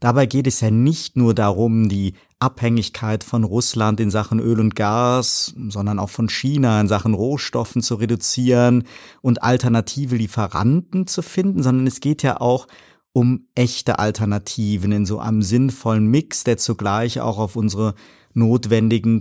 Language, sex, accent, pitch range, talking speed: German, male, German, 110-130 Hz, 155 wpm